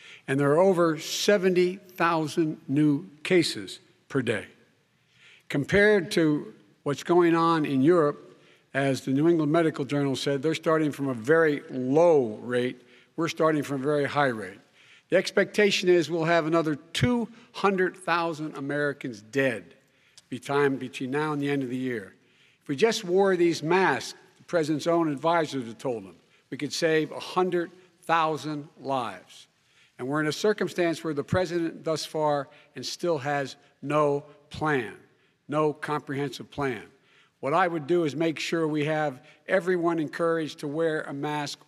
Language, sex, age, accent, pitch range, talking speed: Finnish, male, 60-79, American, 140-170 Hz, 150 wpm